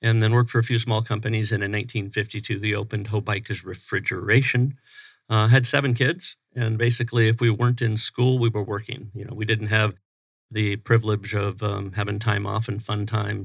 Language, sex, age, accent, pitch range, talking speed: English, male, 50-69, American, 105-120 Hz, 195 wpm